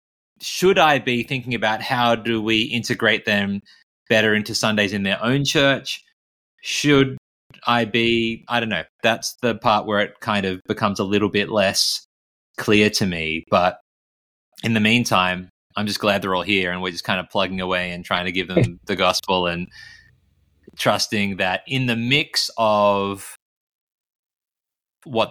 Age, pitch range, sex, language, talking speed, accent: 20-39, 95-115 Hz, male, English, 165 wpm, Australian